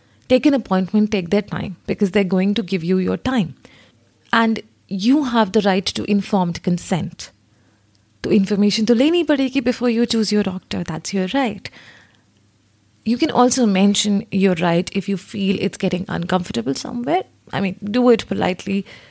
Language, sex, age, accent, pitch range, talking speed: English, female, 30-49, Indian, 180-235 Hz, 165 wpm